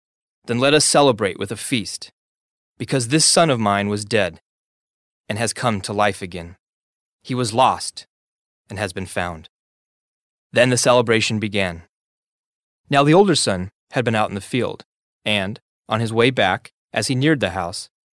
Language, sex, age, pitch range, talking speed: English, male, 20-39, 105-145 Hz, 170 wpm